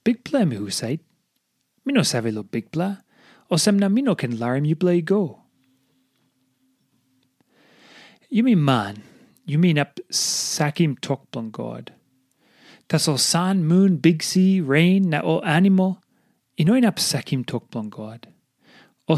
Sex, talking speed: male, 130 wpm